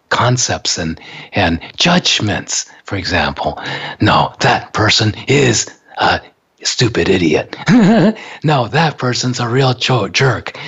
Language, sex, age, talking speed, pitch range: English, male, 40-59, 105 wpm, 115-155 Hz